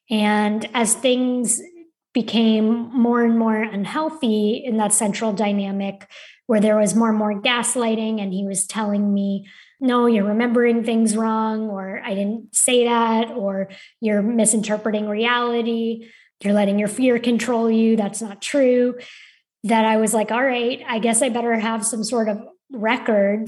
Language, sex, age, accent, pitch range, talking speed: English, female, 20-39, American, 205-235 Hz, 160 wpm